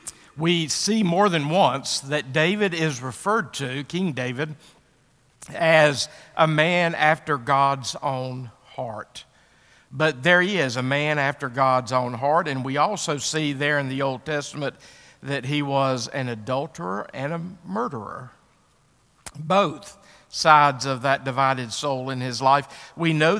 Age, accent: 50-69, American